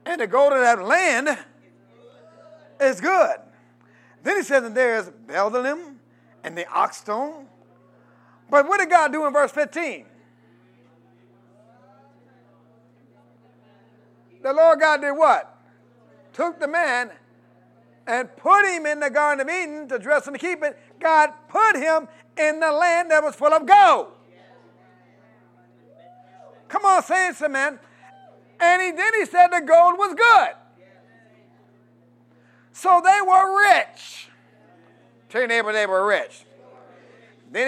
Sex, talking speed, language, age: male, 135 wpm, English, 50-69